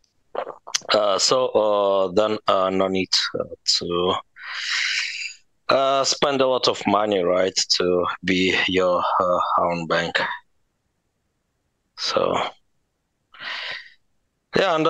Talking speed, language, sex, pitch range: 100 wpm, English, male, 95-130 Hz